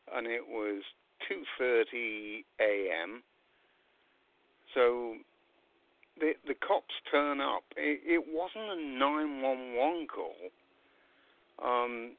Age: 60-79